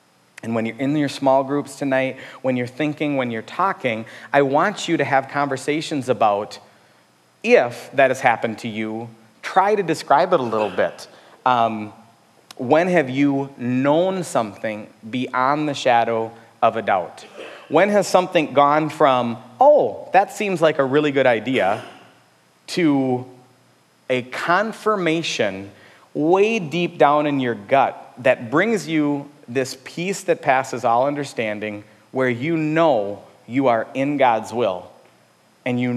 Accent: American